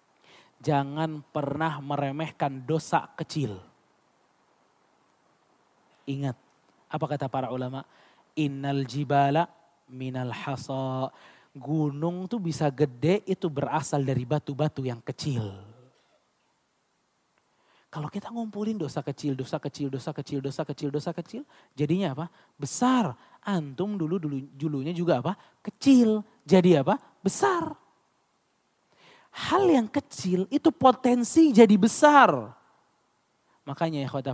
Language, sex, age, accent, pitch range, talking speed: Indonesian, male, 20-39, native, 140-195 Hz, 105 wpm